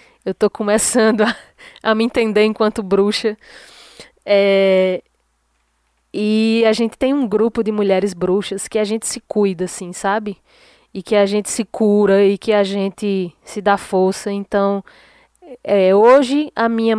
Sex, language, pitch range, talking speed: female, Portuguese, 185-225 Hz, 150 wpm